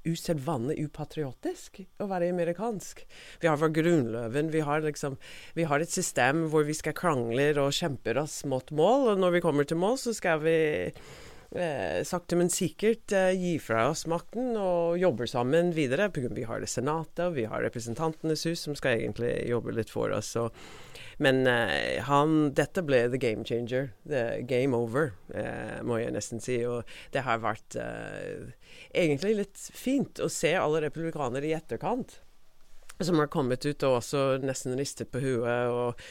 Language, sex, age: English, female, 30-49